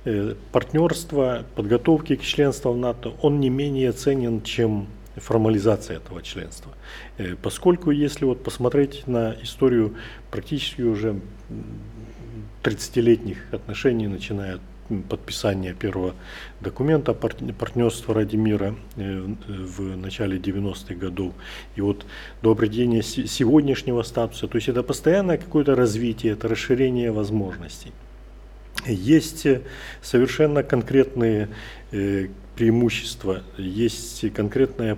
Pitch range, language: 100-120 Hz, Ukrainian